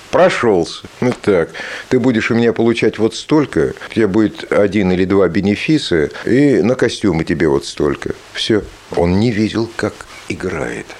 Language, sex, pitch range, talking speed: Russian, male, 100-155 Hz, 160 wpm